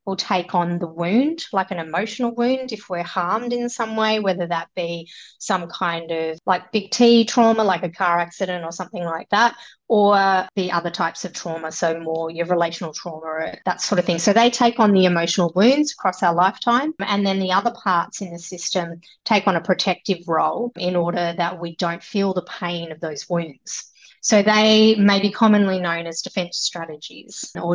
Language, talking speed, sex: English, 200 wpm, female